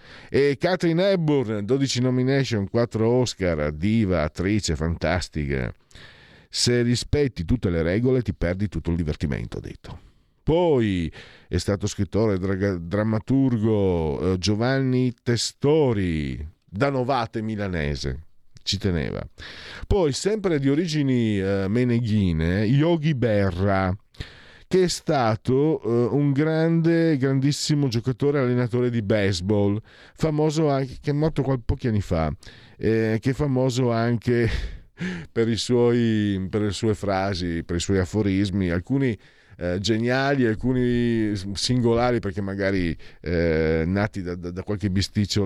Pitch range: 95-130 Hz